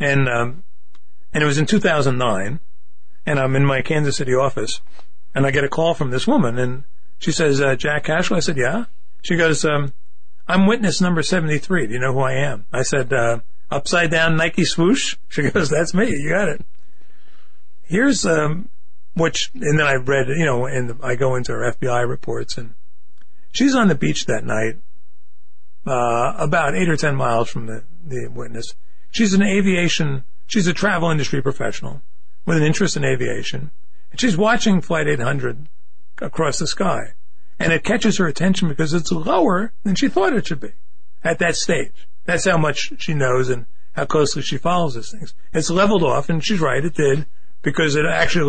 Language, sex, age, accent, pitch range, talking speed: English, male, 40-59, American, 130-170 Hz, 190 wpm